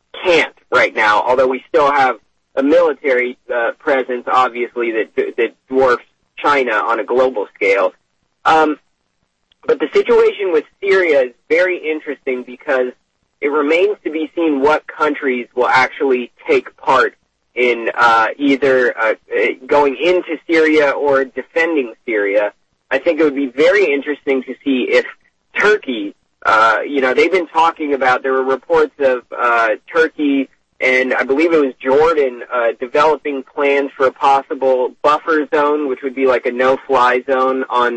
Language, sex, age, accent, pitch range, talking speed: English, male, 30-49, American, 130-210 Hz, 155 wpm